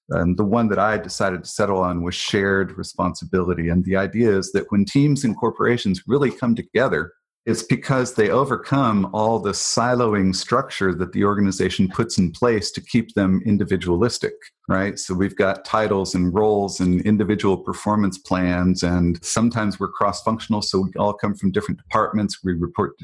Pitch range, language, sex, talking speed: 95-110 Hz, English, male, 175 wpm